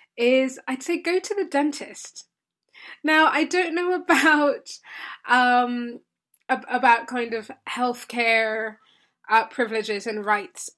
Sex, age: female, 20-39